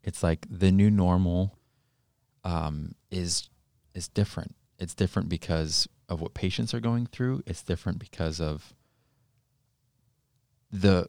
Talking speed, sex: 125 wpm, male